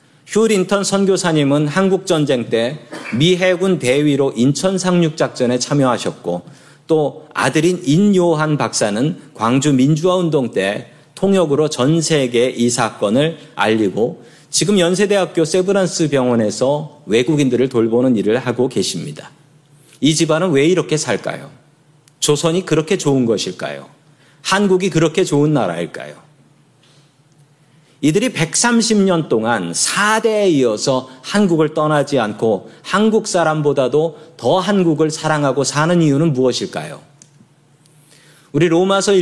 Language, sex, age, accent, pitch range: Korean, male, 40-59, native, 130-170 Hz